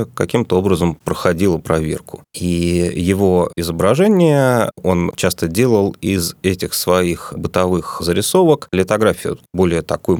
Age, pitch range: 30-49, 85-115 Hz